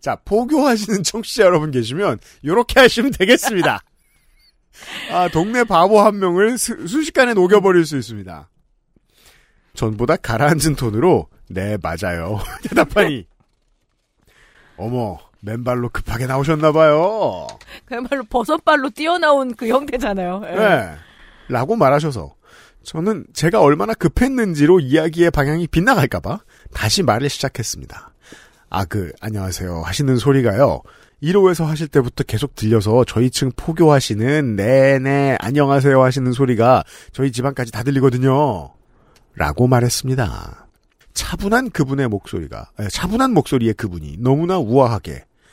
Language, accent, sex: Korean, native, male